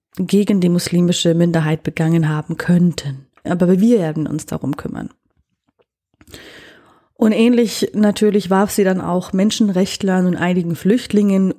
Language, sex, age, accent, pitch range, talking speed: German, female, 30-49, German, 175-220 Hz, 125 wpm